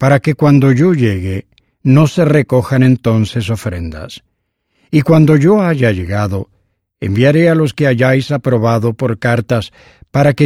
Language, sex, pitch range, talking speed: English, male, 110-145 Hz, 145 wpm